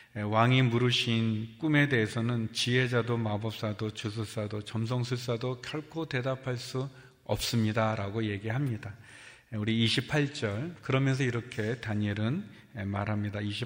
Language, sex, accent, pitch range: Korean, male, native, 110-125 Hz